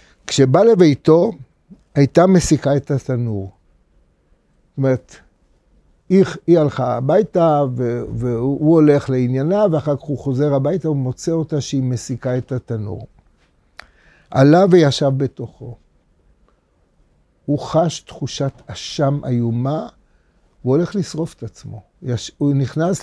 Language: Hebrew